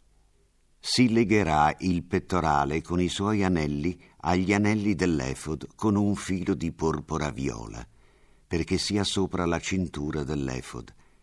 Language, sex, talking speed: Italian, male, 125 wpm